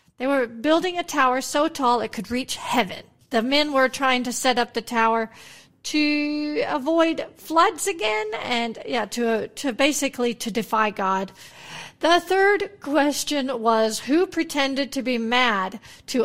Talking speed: 155 wpm